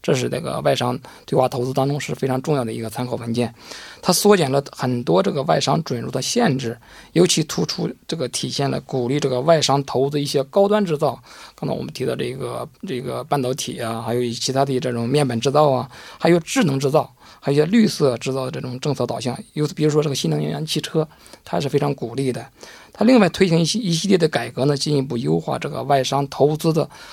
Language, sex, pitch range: Korean, male, 125-155 Hz